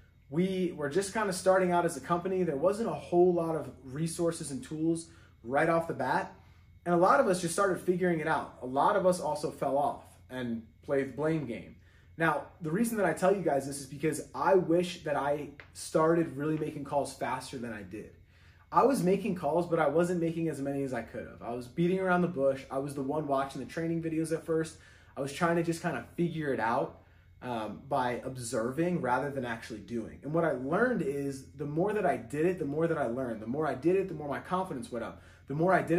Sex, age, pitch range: male, 30-49, 130-175 Hz